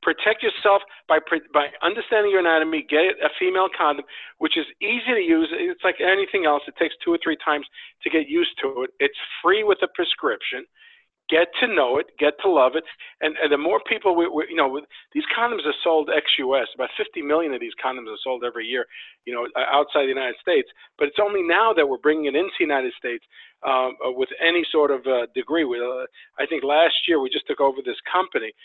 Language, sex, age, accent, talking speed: English, male, 50-69, American, 220 wpm